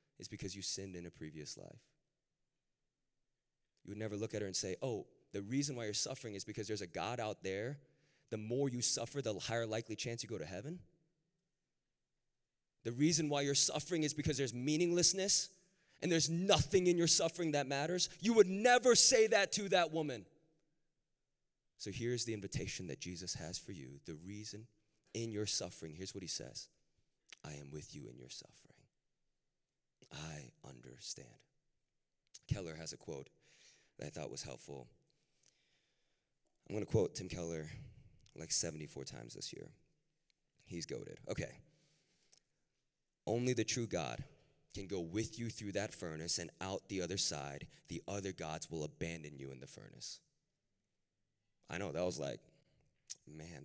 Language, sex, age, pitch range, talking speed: English, male, 30-49, 90-150 Hz, 165 wpm